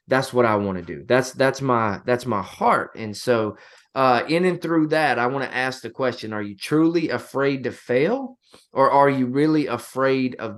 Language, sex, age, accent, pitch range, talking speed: English, male, 20-39, American, 120-150 Hz, 210 wpm